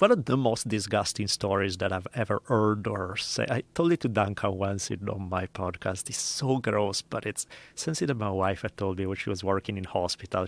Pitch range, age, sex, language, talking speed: 95-115 Hz, 30-49, male, English, 225 wpm